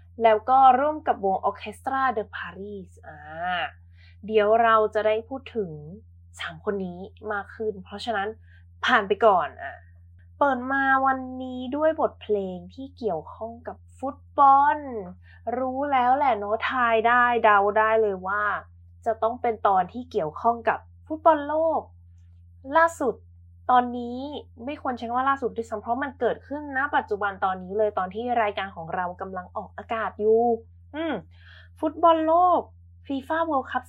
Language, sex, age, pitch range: Thai, female, 20-39, 180-265 Hz